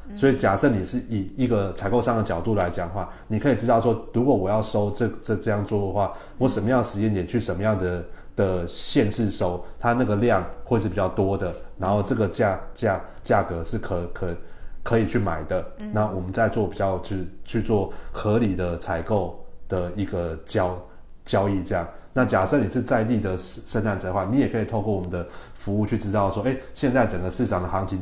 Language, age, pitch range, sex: Chinese, 30-49, 90-110 Hz, male